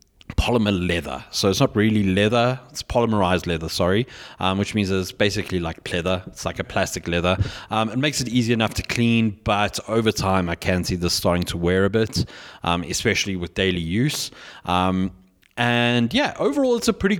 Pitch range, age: 95-125 Hz, 30-49